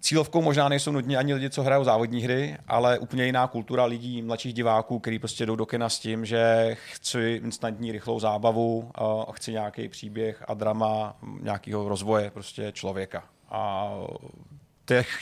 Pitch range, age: 110-125 Hz, 30-49